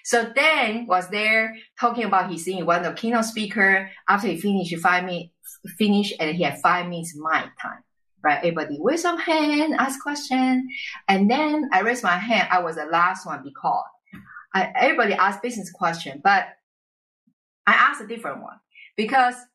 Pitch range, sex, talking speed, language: 165-240 Hz, female, 180 wpm, English